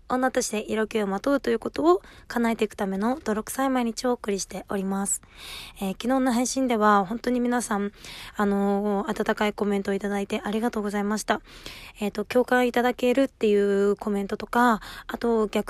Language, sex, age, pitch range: Japanese, female, 20-39, 200-240 Hz